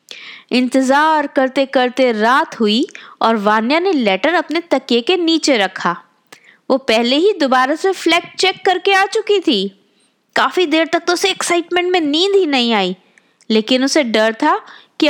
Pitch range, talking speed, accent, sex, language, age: 245-380 Hz, 165 wpm, native, female, Hindi, 20-39